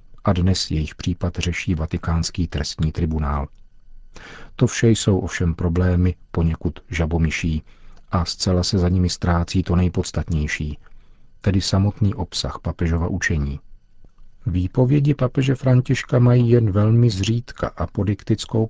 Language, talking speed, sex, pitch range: Czech, 120 wpm, male, 85-105 Hz